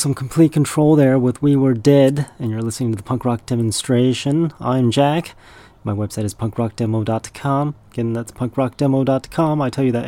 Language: English